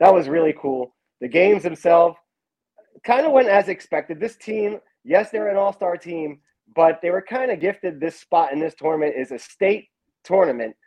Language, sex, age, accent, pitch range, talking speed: English, male, 30-49, American, 145-190 Hz, 190 wpm